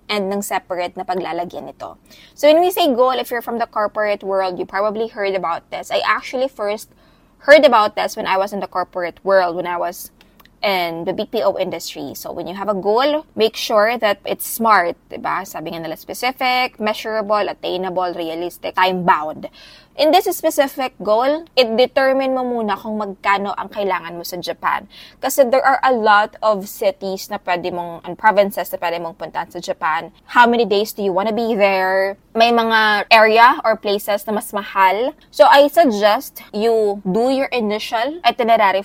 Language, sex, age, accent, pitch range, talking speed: Filipino, female, 20-39, native, 190-240 Hz, 180 wpm